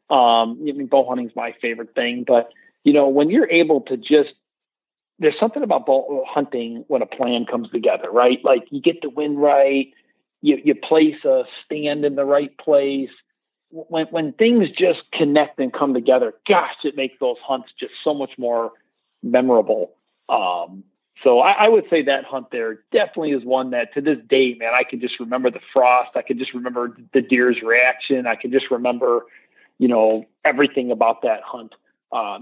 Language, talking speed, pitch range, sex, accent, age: English, 190 wpm, 120-155 Hz, male, American, 40-59